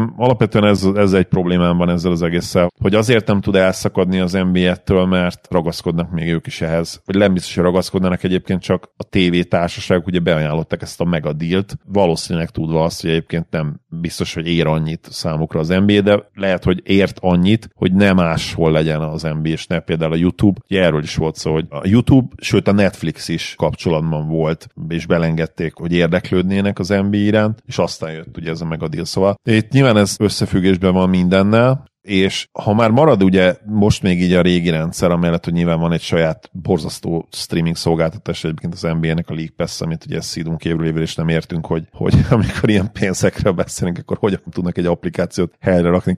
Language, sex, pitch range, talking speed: Hungarian, male, 80-100 Hz, 185 wpm